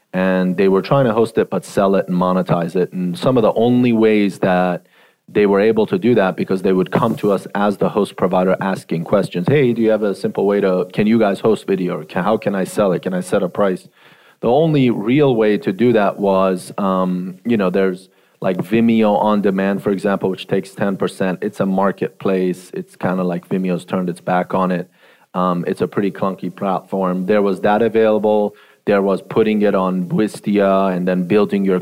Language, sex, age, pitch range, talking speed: English, male, 30-49, 90-105 Hz, 215 wpm